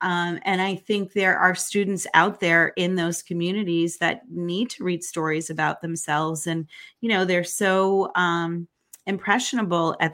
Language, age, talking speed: English, 30-49, 160 wpm